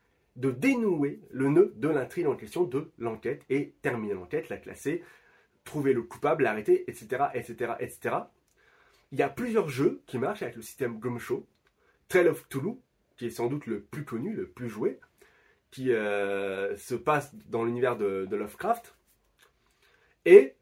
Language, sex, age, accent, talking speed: French, male, 30-49, French, 165 wpm